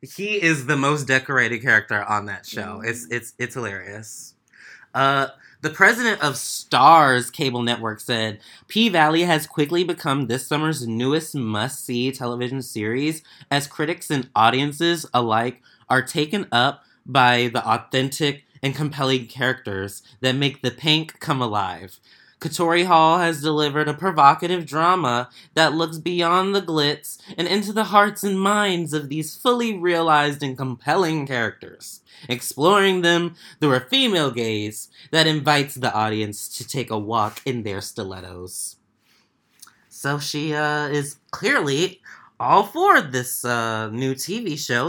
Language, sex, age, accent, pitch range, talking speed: English, male, 20-39, American, 120-165 Hz, 140 wpm